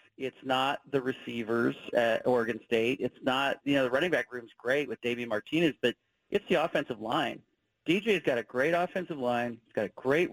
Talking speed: 200 wpm